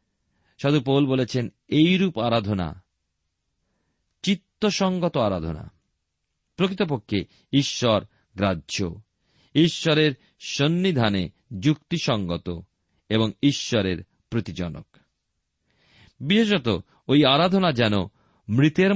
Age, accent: 40-59, native